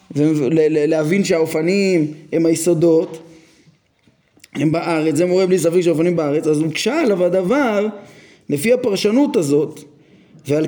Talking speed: 120 wpm